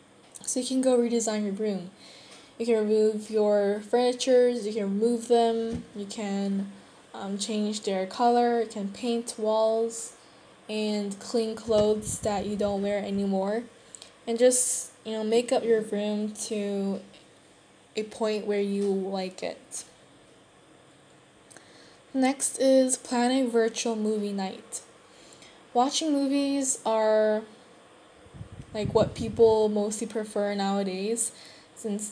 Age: 10-29